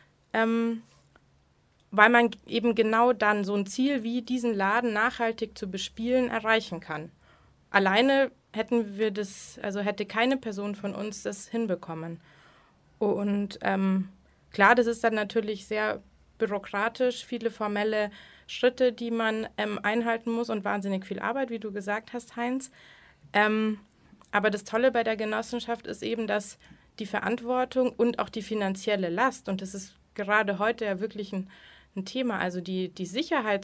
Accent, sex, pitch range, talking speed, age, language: German, female, 195-230 Hz, 150 wpm, 20-39, German